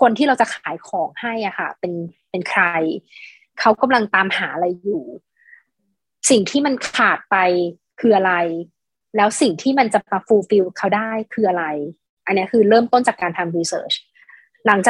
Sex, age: female, 20-39